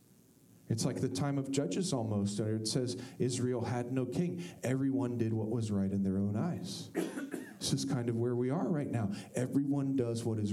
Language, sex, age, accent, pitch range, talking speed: English, male, 40-59, American, 130-190 Hz, 200 wpm